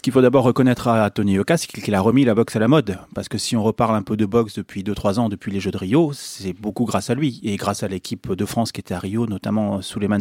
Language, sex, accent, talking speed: French, male, French, 310 wpm